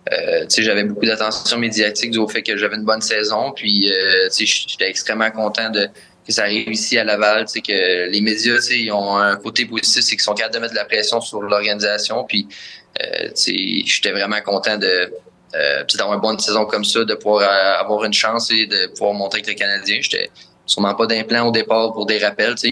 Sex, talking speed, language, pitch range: male, 215 wpm, French, 105-110 Hz